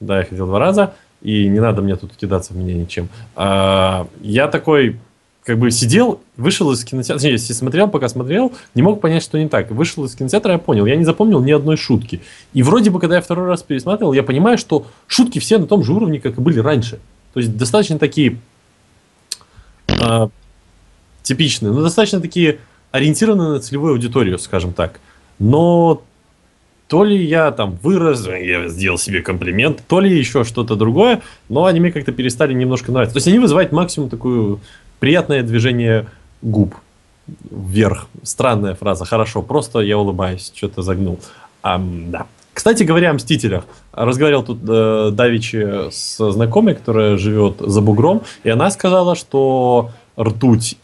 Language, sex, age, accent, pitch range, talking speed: Russian, male, 20-39, native, 105-155 Hz, 165 wpm